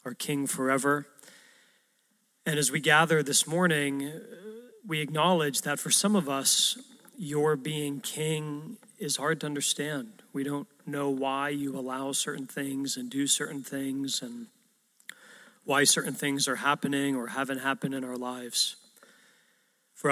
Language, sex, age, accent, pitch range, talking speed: English, male, 40-59, American, 135-170 Hz, 145 wpm